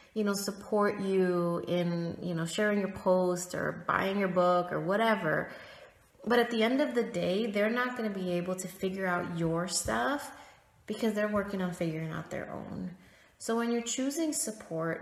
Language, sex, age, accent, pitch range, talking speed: English, female, 30-49, American, 175-225 Hz, 190 wpm